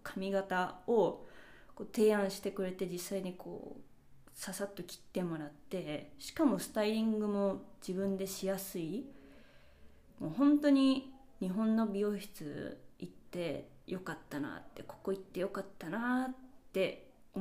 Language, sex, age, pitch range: Japanese, female, 20-39, 170-215 Hz